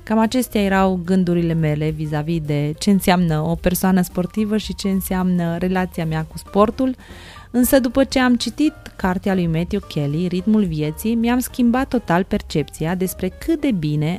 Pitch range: 175-235 Hz